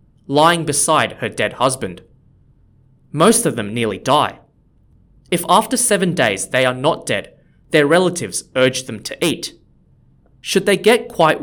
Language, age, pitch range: English, 20-39, 125-165 Hz